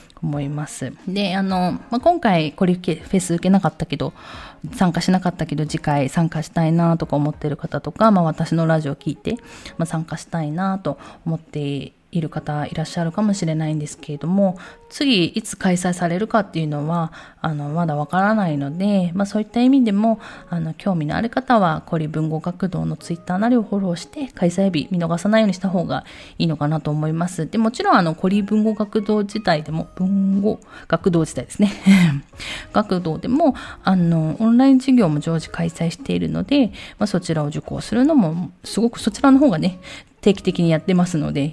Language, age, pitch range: Japanese, 20-39, 155-210 Hz